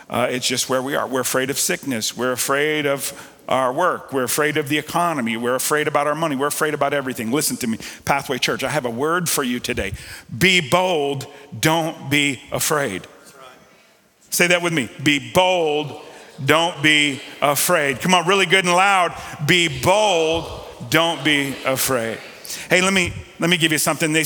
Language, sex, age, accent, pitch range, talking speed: English, male, 50-69, American, 150-180 Hz, 185 wpm